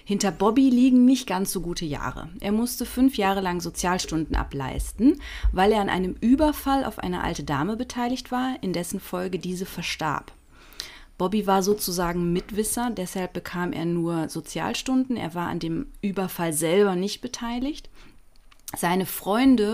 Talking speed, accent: 150 wpm, German